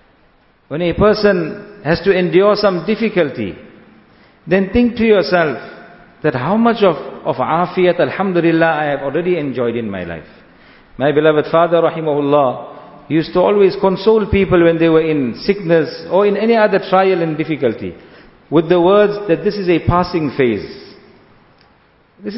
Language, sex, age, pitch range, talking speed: English, male, 50-69, 155-200 Hz, 155 wpm